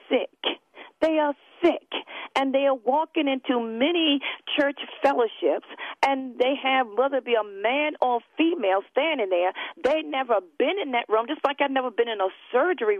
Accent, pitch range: American, 230-315 Hz